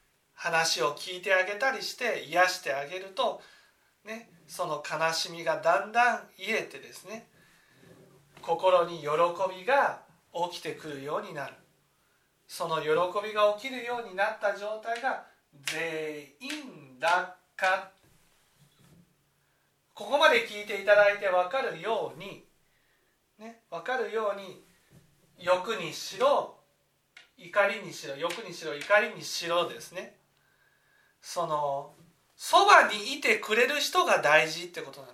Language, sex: Japanese, male